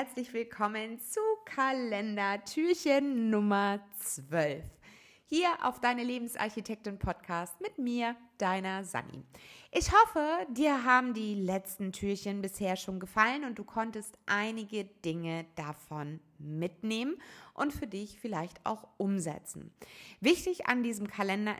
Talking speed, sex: 120 wpm, female